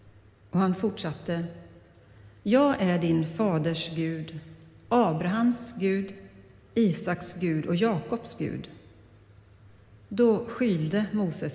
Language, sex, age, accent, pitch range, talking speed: Swedish, female, 40-59, native, 150-205 Hz, 95 wpm